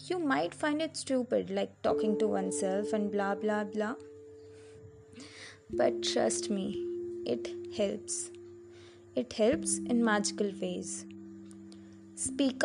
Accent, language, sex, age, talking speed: Indian, English, female, 20-39, 115 wpm